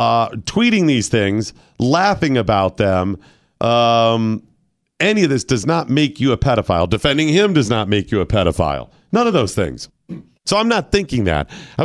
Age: 40-59